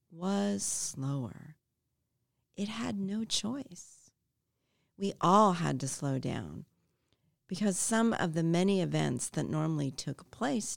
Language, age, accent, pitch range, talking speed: English, 50-69, American, 130-170 Hz, 125 wpm